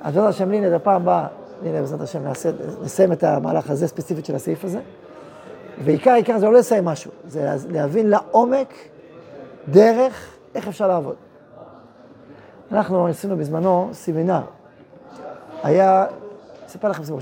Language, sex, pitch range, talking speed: Hebrew, male, 170-225 Hz, 125 wpm